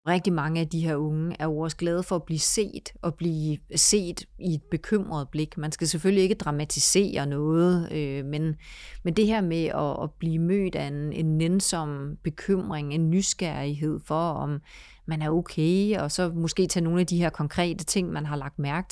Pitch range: 150-175 Hz